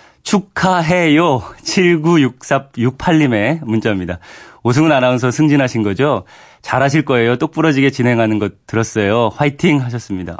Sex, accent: male, native